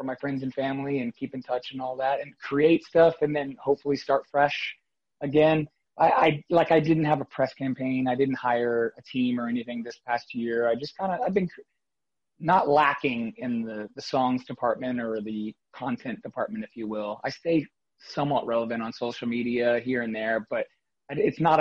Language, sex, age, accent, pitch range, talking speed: English, male, 30-49, American, 115-145 Hz, 200 wpm